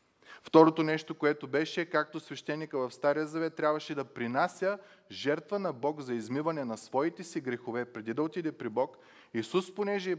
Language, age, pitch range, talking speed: Bulgarian, 30-49, 130-190 Hz, 170 wpm